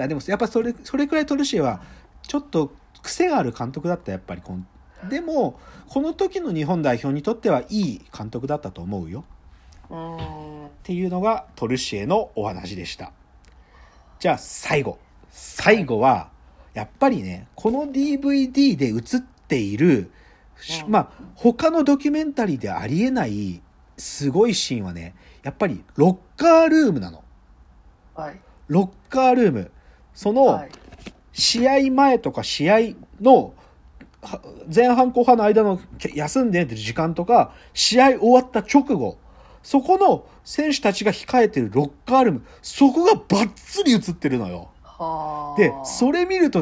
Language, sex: Japanese, male